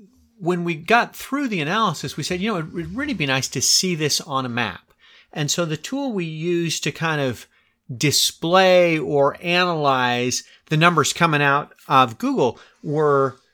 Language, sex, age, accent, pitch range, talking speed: English, male, 30-49, American, 135-180 Hz, 175 wpm